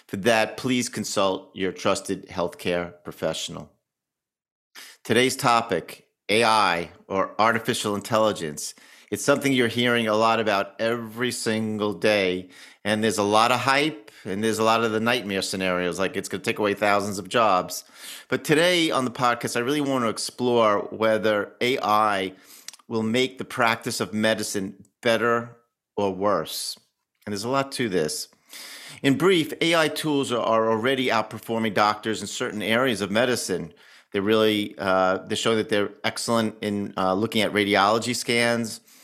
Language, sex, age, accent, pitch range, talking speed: English, male, 50-69, American, 100-120 Hz, 155 wpm